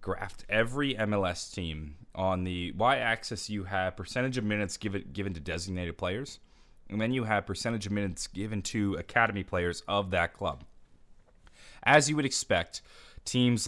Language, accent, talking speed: English, American, 160 wpm